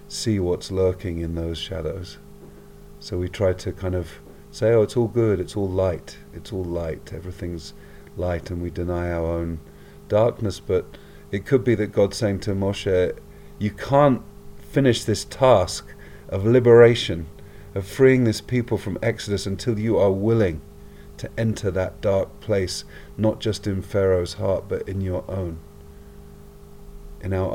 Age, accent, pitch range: 40-59, British, 80-100 Hz